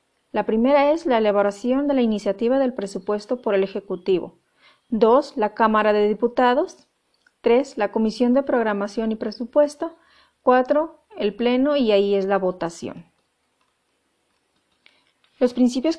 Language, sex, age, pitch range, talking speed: Spanish, female, 40-59, 215-255 Hz, 130 wpm